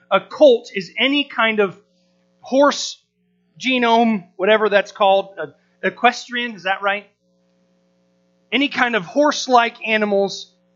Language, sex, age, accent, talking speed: English, male, 30-49, American, 110 wpm